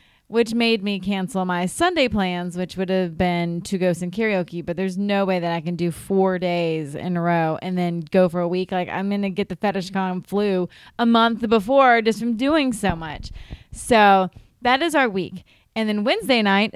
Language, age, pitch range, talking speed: English, 20-39, 175-220 Hz, 215 wpm